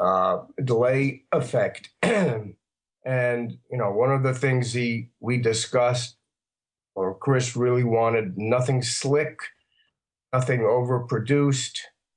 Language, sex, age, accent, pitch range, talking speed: English, male, 50-69, American, 115-130 Hz, 105 wpm